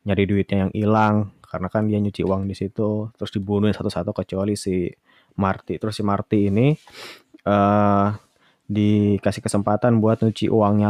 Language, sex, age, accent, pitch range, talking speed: Indonesian, male, 20-39, native, 95-105 Hz, 150 wpm